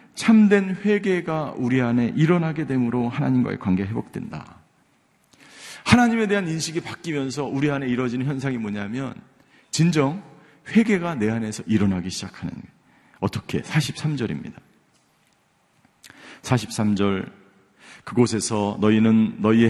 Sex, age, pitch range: male, 40-59, 120-165 Hz